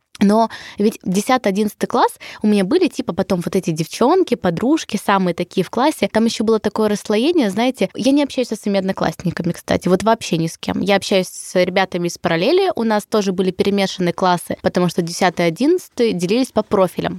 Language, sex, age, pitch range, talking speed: Russian, female, 20-39, 185-240 Hz, 185 wpm